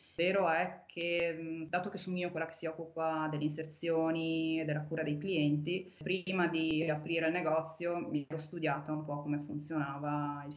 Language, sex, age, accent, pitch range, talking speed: Italian, female, 20-39, native, 150-175 Hz, 175 wpm